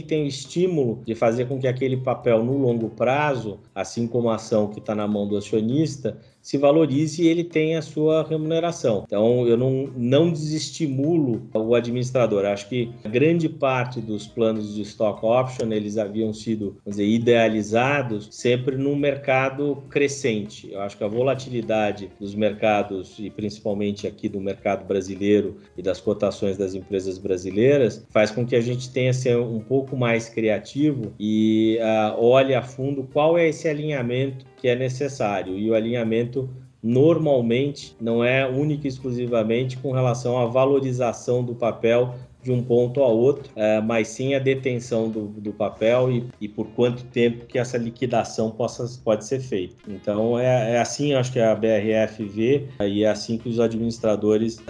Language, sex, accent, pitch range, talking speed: Portuguese, male, Brazilian, 110-130 Hz, 170 wpm